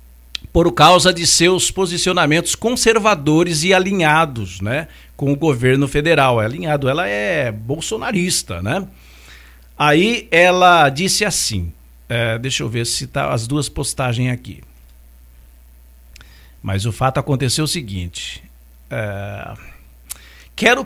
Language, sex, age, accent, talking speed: English, male, 60-79, Brazilian, 120 wpm